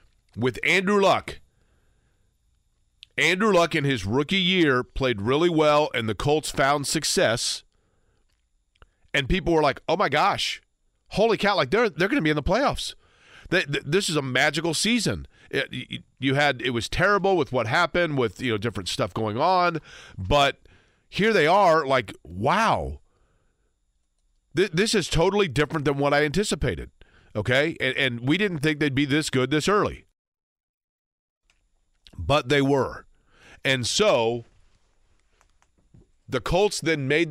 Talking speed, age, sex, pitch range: 150 wpm, 40-59, male, 110-160 Hz